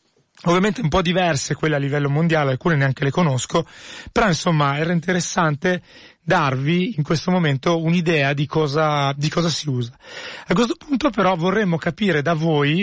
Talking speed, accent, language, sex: 160 wpm, native, Italian, male